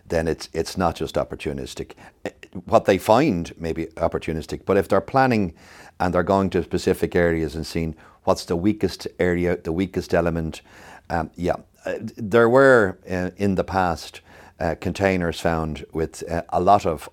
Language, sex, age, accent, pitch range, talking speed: English, male, 60-79, Irish, 85-100 Hz, 165 wpm